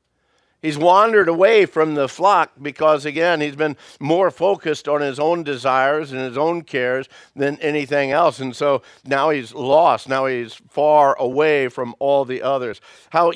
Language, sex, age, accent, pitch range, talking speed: English, male, 60-79, American, 140-165 Hz, 165 wpm